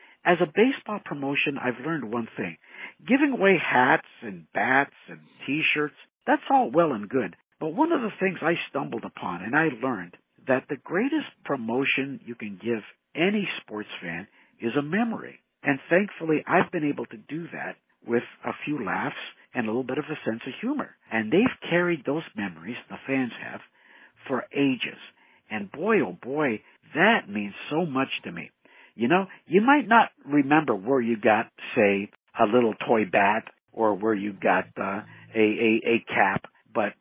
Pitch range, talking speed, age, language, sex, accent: 120-170 Hz, 175 wpm, 60-79, English, male, American